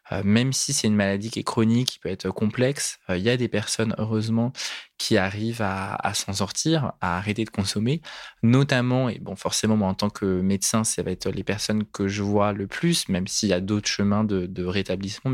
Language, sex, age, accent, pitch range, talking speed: French, male, 20-39, French, 100-115 Hz, 220 wpm